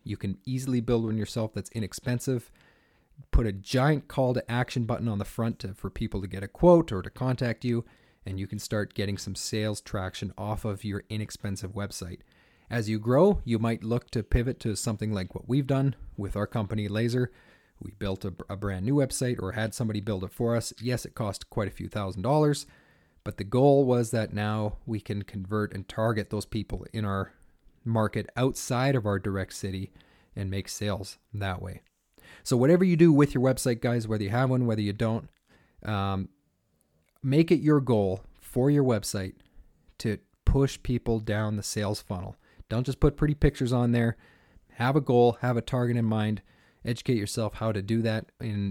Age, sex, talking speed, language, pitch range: 40-59, male, 195 wpm, English, 100-125 Hz